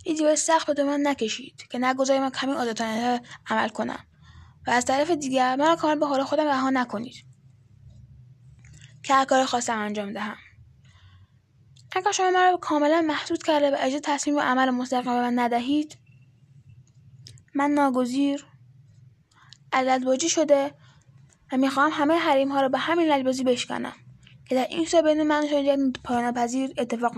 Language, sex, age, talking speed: Persian, female, 10-29, 150 wpm